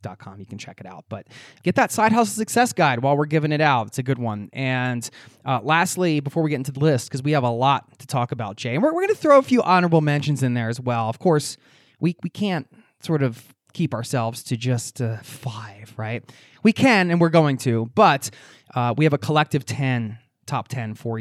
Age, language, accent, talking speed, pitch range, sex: 20-39, English, American, 240 wpm, 125-150 Hz, male